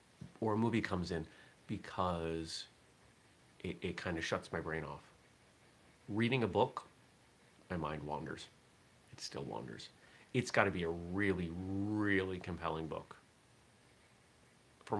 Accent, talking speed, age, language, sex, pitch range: American, 130 wpm, 30-49, English, male, 90-130 Hz